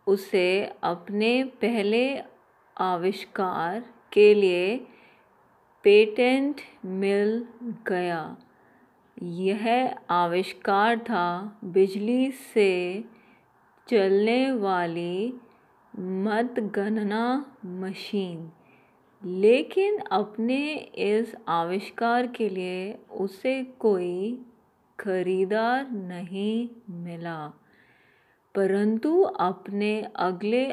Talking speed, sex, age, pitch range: 60 wpm, female, 30-49, 190-230 Hz